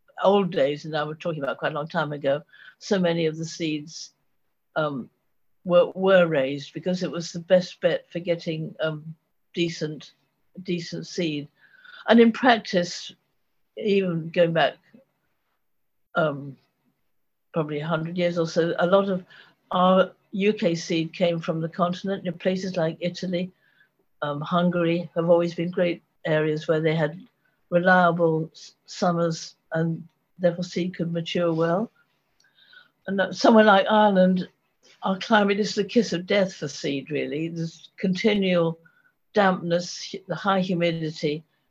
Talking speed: 140 wpm